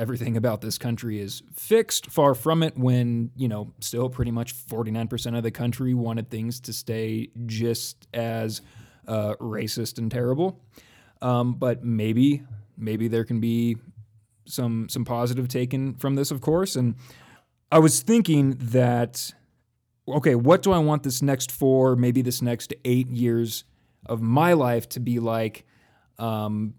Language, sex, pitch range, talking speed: English, male, 115-135 Hz, 155 wpm